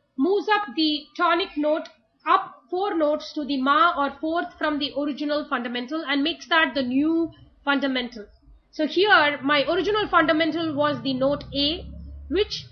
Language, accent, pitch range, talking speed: English, Indian, 280-335 Hz, 155 wpm